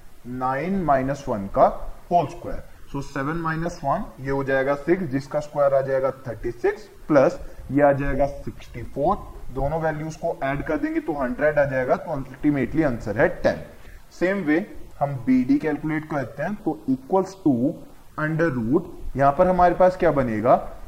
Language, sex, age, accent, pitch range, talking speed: Hindi, male, 20-39, native, 135-170 Hz, 170 wpm